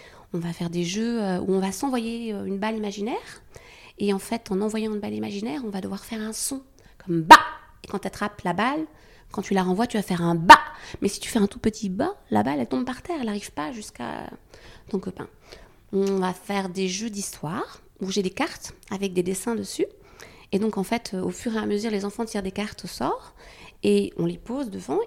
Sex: female